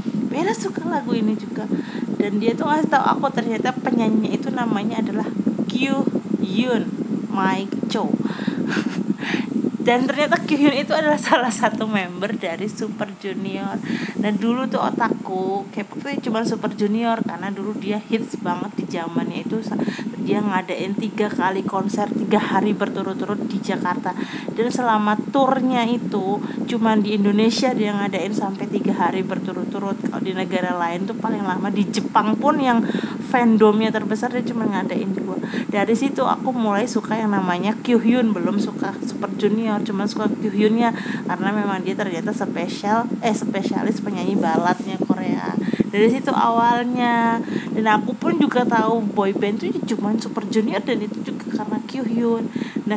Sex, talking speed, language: female, 150 wpm, Indonesian